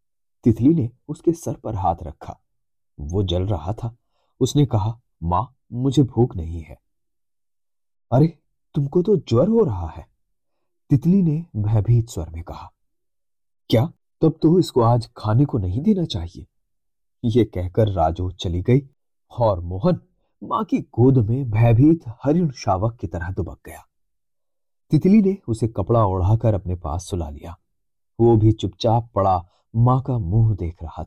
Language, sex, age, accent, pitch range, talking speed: Hindi, male, 30-49, native, 95-130 Hz, 135 wpm